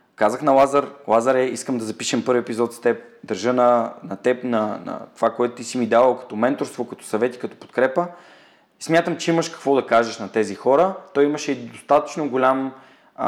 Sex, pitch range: male, 120-165 Hz